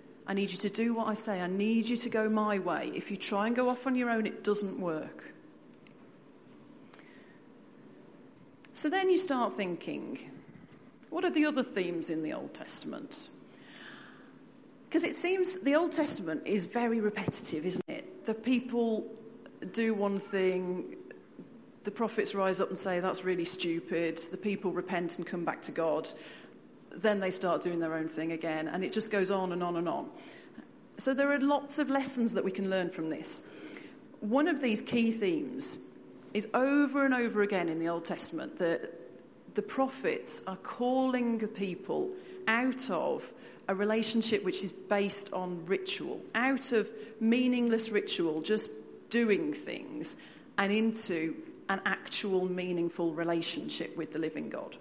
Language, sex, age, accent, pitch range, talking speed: English, female, 40-59, British, 185-260 Hz, 165 wpm